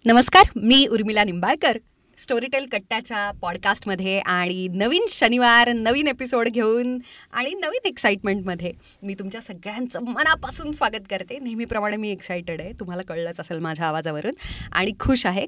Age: 30-49